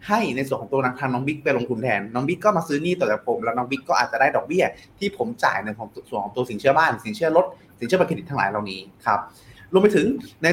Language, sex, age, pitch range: Thai, male, 20-39, 125-175 Hz